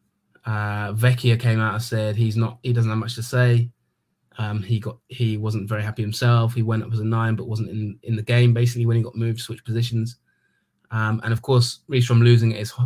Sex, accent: male, British